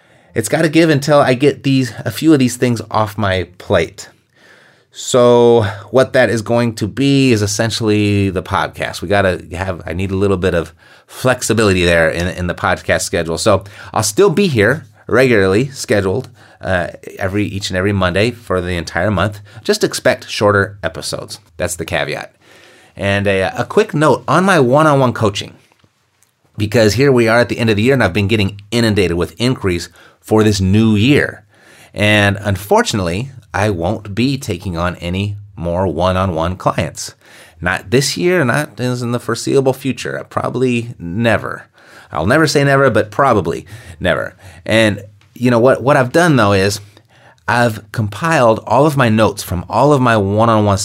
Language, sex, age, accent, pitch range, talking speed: English, male, 30-49, American, 95-125 Hz, 170 wpm